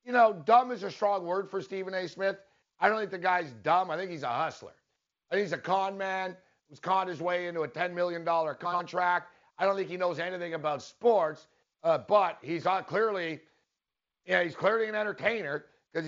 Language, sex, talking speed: English, male, 210 wpm